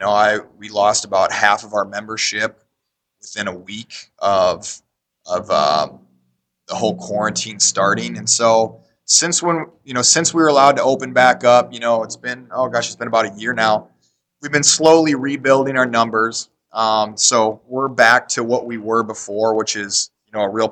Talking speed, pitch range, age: 190 wpm, 100-115 Hz, 20-39